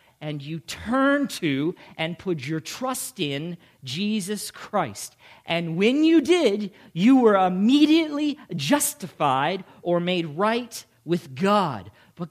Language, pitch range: English, 155-235 Hz